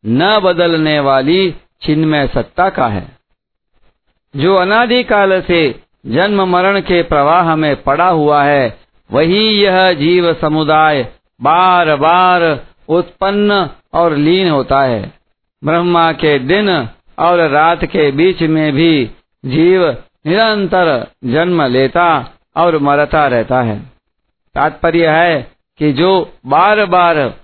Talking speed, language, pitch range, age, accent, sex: 115 wpm, Hindi, 145-185 Hz, 50-69, native, male